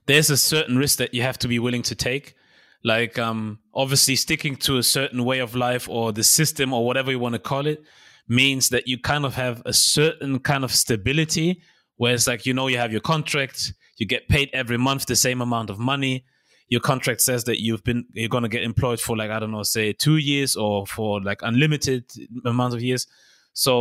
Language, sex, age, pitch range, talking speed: German, male, 20-39, 120-145 Hz, 225 wpm